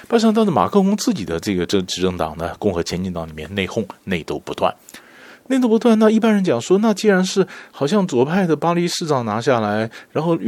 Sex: male